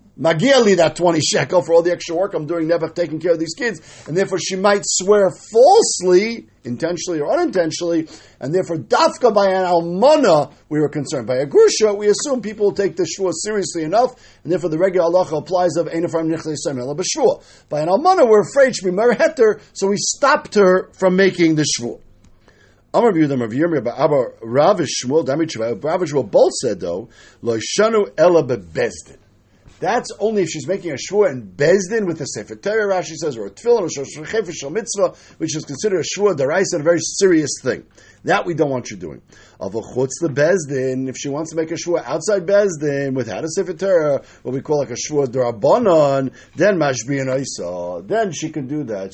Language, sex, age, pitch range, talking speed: English, male, 50-69, 145-205 Hz, 170 wpm